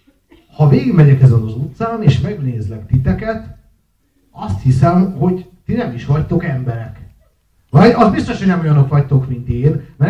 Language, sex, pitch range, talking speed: Hungarian, male, 125-170 Hz, 155 wpm